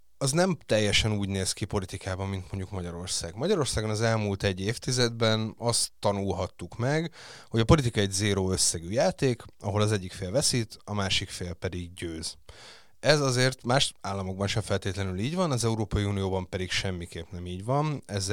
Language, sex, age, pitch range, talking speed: Hungarian, male, 30-49, 95-115 Hz, 170 wpm